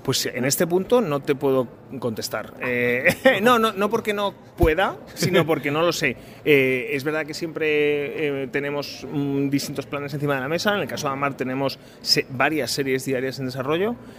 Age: 30-49